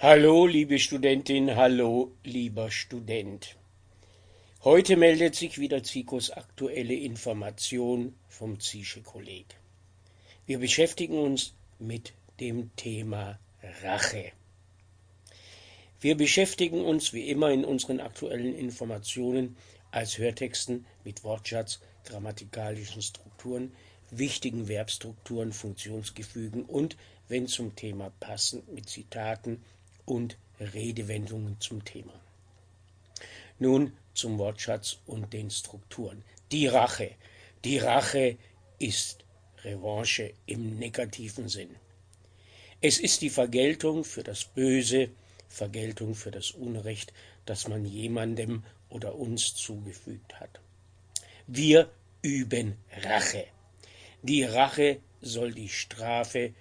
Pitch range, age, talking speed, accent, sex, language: 95-125 Hz, 60-79, 95 wpm, German, male, German